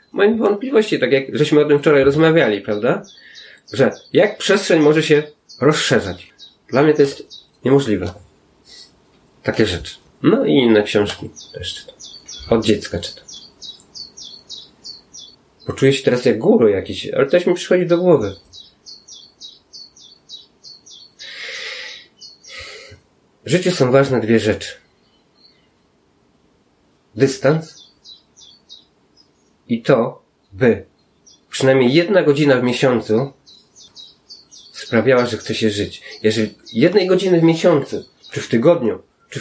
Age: 30-49